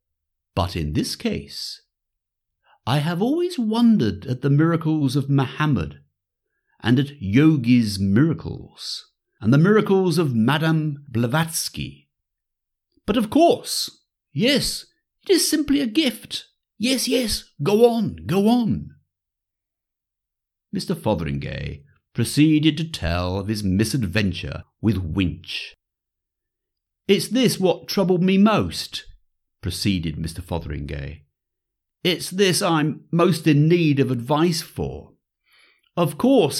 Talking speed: 110 wpm